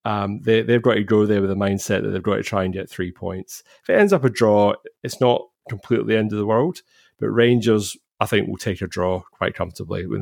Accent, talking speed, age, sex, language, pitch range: British, 260 wpm, 30-49, male, English, 95-110 Hz